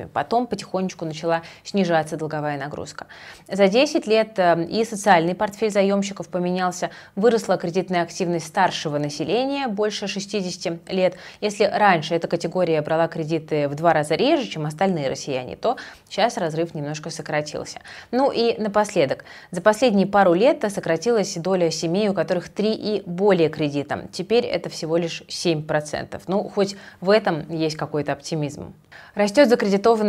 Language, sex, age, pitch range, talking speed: Russian, female, 20-39, 160-205 Hz, 140 wpm